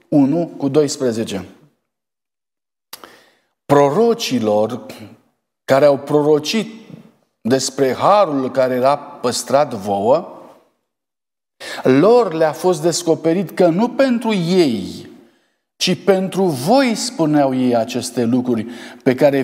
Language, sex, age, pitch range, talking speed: Romanian, male, 50-69, 135-190 Hz, 95 wpm